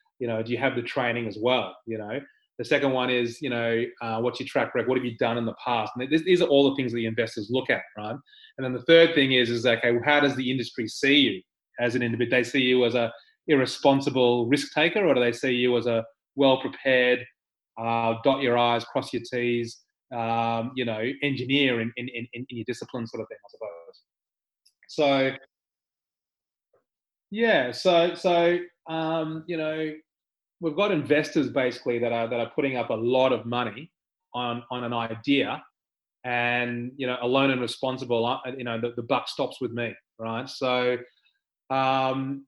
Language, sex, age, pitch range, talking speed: English, male, 30-49, 120-140 Hz, 200 wpm